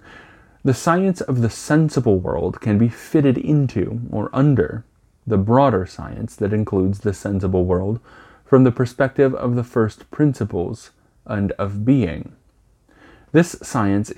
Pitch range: 95-125 Hz